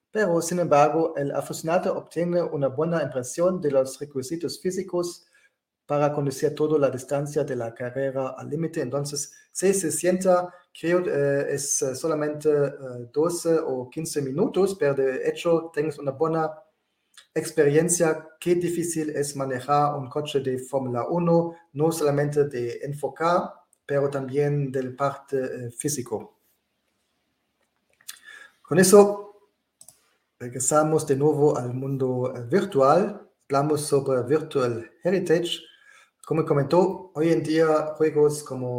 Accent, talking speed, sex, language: German, 120 wpm, male, Spanish